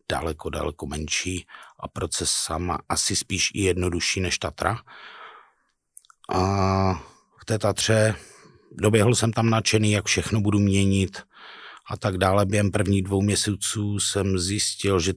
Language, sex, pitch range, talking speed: Czech, male, 90-100 Hz, 135 wpm